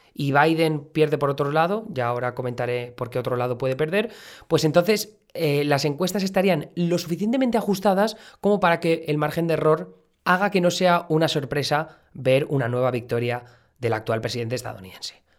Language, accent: Spanish, Spanish